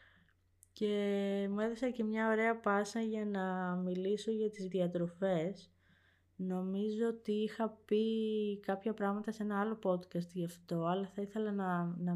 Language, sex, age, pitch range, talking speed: Greek, female, 20-39, 165-200 Hz, 150 wpm